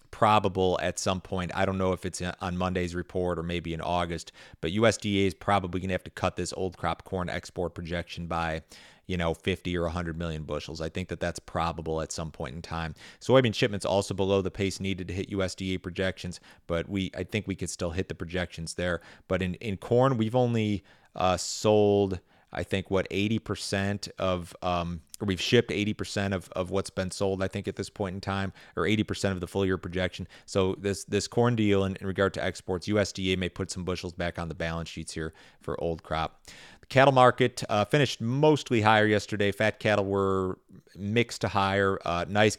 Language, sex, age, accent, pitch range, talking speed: English, male, 30-49, American, 85-100 Hz, 205 wpm